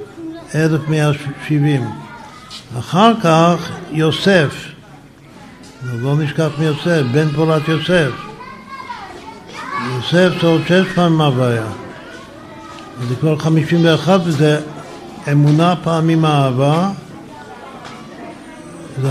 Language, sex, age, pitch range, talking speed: Hebrew, male, 60-79, 135-160 Hz, 80 wpm